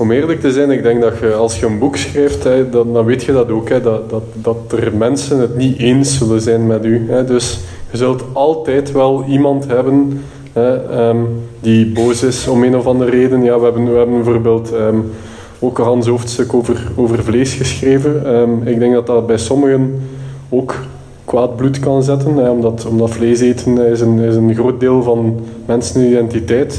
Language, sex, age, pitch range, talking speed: Dutch, male, 20-39, 115-135 Hz, 175 wpm